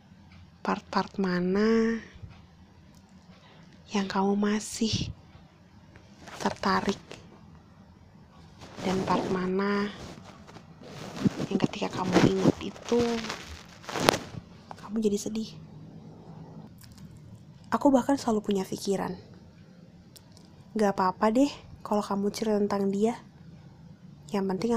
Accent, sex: native, female